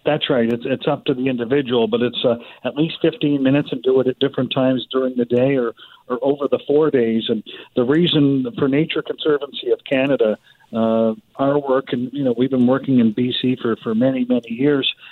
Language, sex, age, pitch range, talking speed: English, male, 50-69, 125-150 Hz, 215 wpm